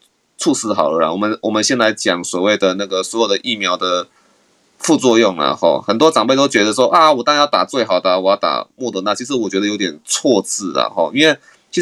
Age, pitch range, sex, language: 20-39, 105-140 Hz, male, Chinese